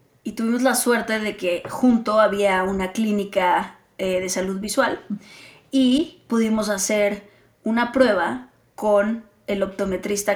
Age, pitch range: 20-39, 195-235 Hz